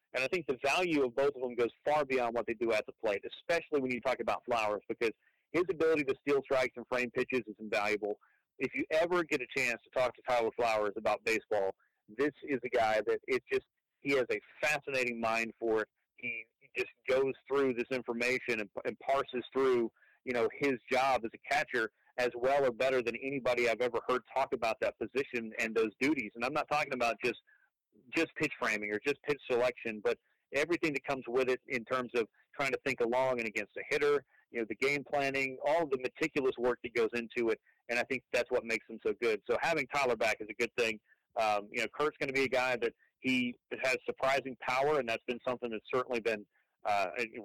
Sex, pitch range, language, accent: male, 120-150 Hz, English, American